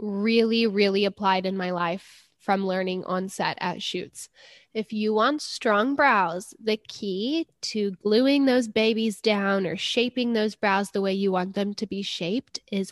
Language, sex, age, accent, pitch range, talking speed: English, female, 10-29, American, 200-245 Hz, 170 wpm